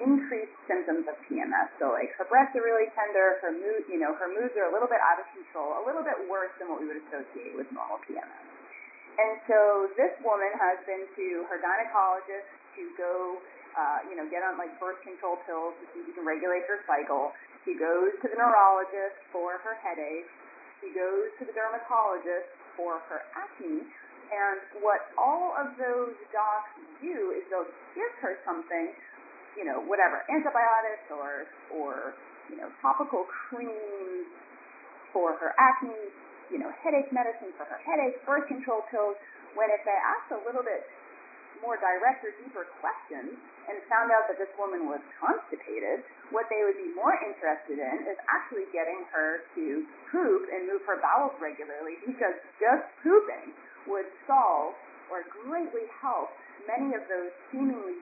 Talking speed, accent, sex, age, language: 170 wpm, American, female, 30-49, English